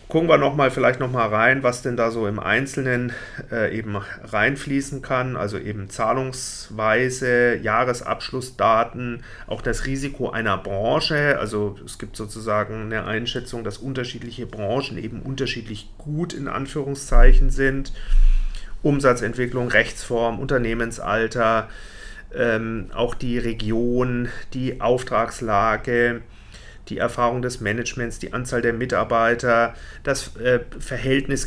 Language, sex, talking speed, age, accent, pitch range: German, male, 110 wpm, 40-59, German, 110-130 Hz